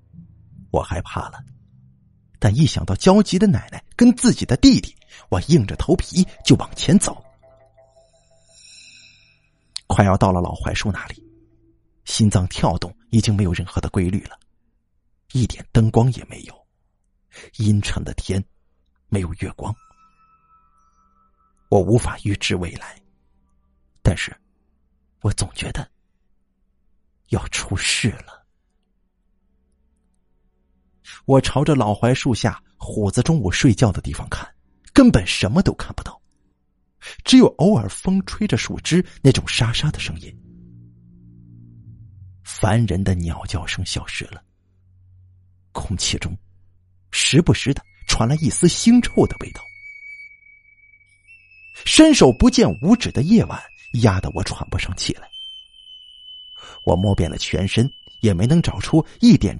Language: Chinese